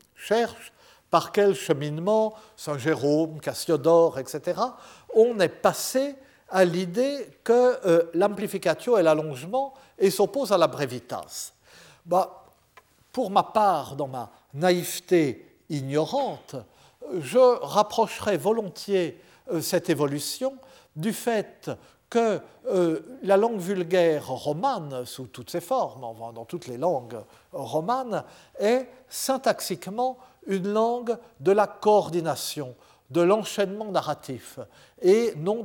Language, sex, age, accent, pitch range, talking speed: French, male, 50-69, French, 150-215 Hz, 105 wpm